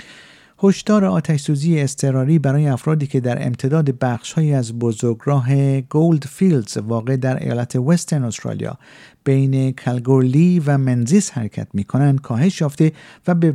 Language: Persian